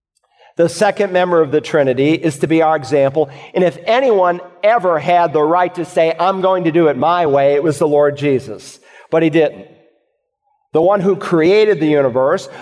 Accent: American